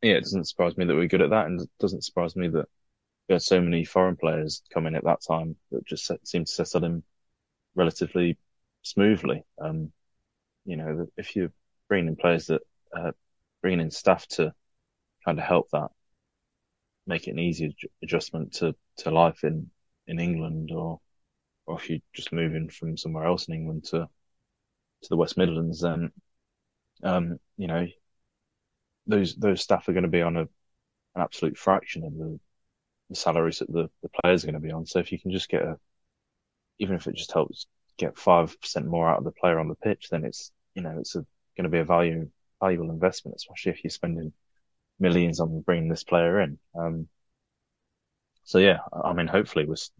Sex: male